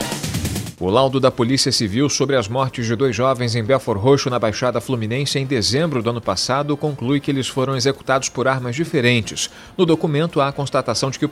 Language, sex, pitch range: Portuguese, male, 115-140 Hz